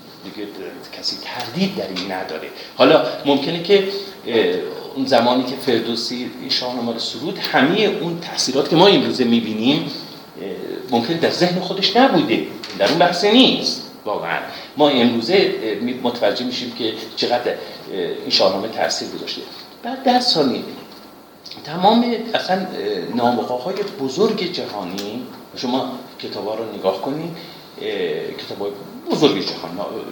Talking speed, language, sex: 120 wpm, Persian, male